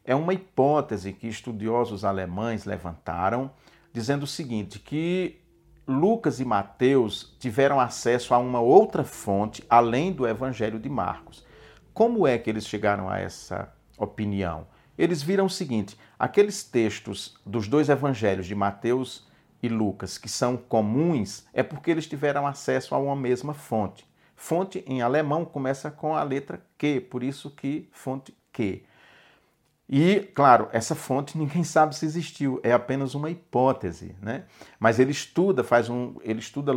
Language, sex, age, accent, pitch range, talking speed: Portuguese, male, 50-69, Brazilian, 105-140 Hz, 150 wpm